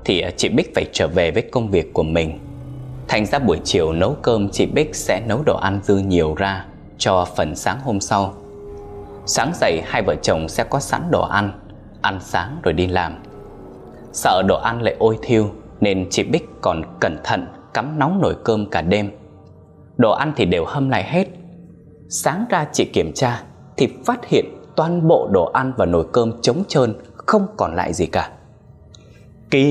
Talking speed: 190 wpm